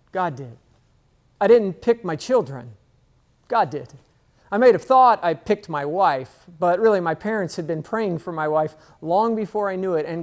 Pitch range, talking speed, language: 160-215 Hz, 195 wpm, English